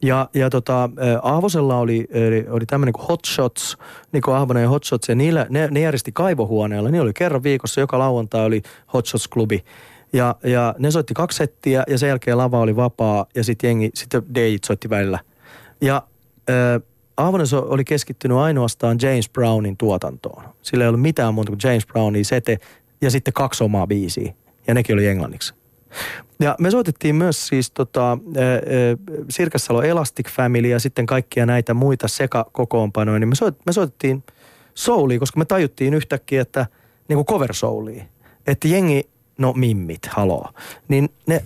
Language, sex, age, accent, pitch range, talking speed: Finnish, male, 30-49, native, 115-140 Hz, 160 wpm